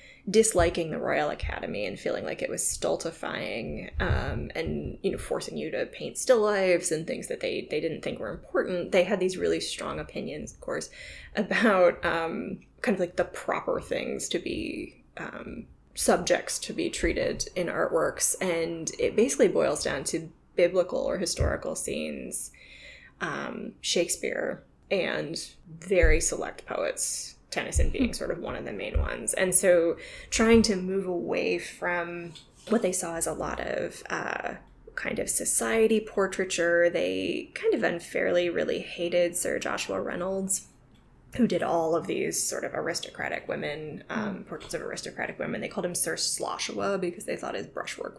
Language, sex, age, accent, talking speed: English, female, 20-39, American, 165 wpm